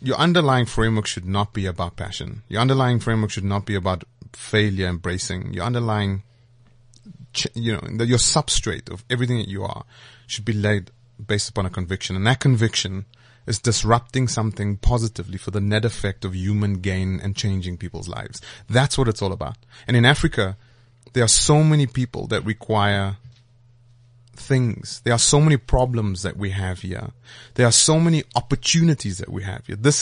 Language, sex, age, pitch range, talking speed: English, male, 30-49, 100-120 Hz, 175 wpm